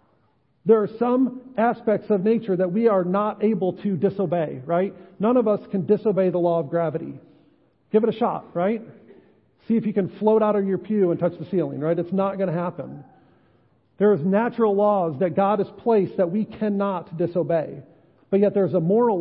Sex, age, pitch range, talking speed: male, 50-69, 160-205 Hz, 200 wpm